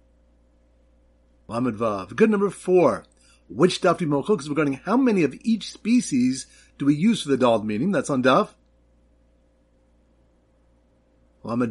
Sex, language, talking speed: male, English, 145 wpm